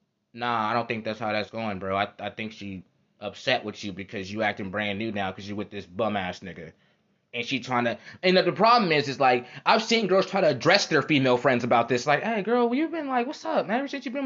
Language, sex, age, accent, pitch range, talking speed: English, male, 20-39, American, 120-205 Hz, 265 wpm